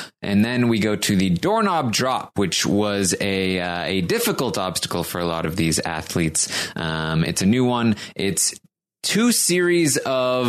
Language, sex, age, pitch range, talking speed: English, male, 20-39, 90-130 Hz, 170 wpm